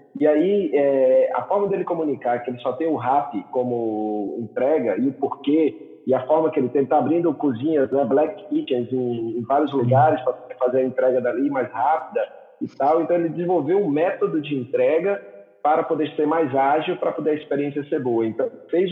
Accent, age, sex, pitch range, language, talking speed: Brazilian, 40-59, male, 120-160 Hz, Portuguese, 200 wpm